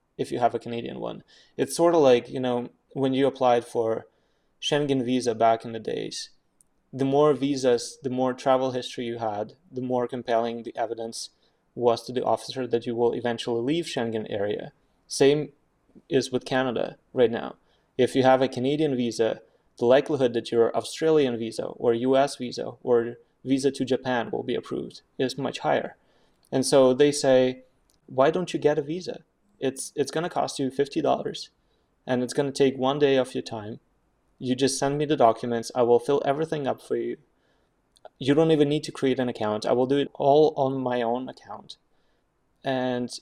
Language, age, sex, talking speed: English, 20-39, male, 190 wpm